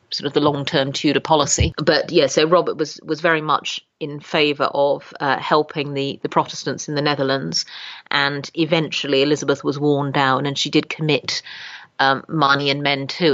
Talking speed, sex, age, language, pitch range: 185 wpm, female, 40-59, English, 140-155 Hz